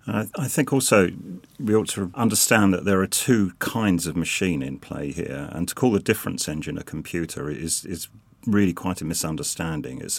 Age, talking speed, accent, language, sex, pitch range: 40-59, 195 wpm, British, English, male, 80-100 Hz